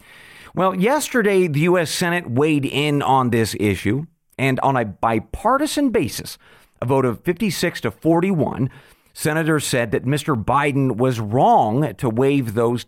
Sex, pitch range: male, 120-160 Hz